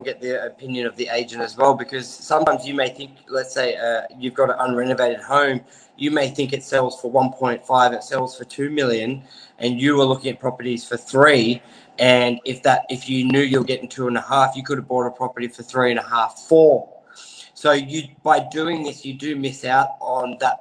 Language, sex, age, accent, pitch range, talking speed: English, male, 20-39, Australian, 125-140 Hz, 220 wpm